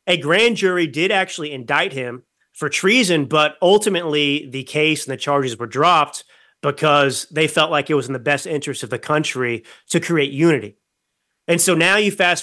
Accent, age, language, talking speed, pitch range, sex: American, 30-49, English, 190 wpm, 140-175 Hz, male